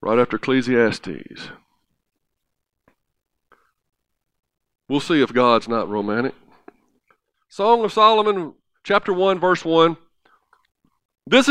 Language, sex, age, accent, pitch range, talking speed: English, male, 50-69, American, 125-190 Hz, 90 wpm